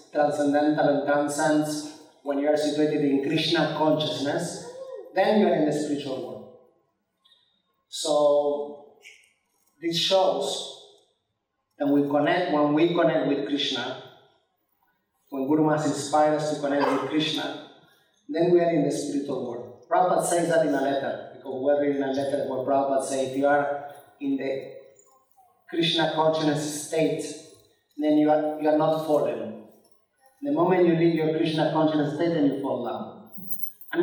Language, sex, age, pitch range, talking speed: English, male, 30-49, 140-160 Hz, 155 wpm